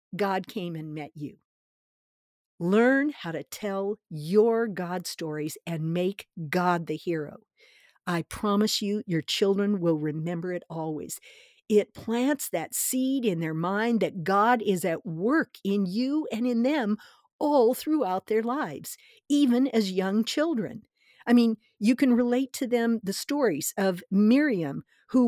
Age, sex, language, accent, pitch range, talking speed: 50-69, female, English, American, 185-245 Hz, 150 wpm